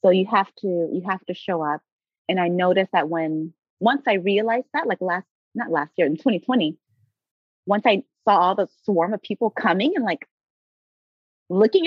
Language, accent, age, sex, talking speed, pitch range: English, American, 30-49, female, 190 wpm, 180-255 Hz